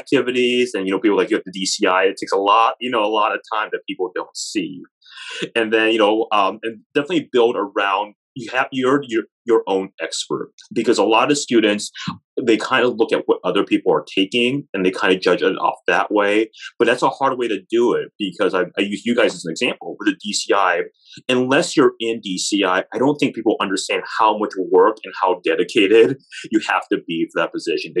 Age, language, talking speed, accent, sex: 30-49, English, 225 wpm, American, male